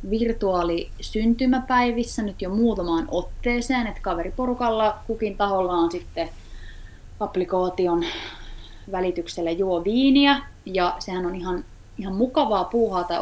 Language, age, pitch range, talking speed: Finnish, 20-39, 175-240 Hz, 105 wpm